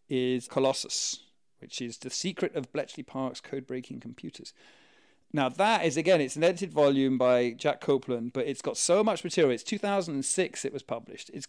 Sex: male